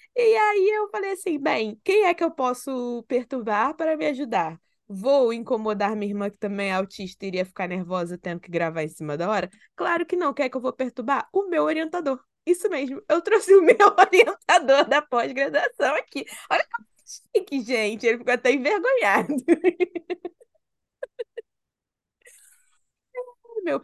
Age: 20-39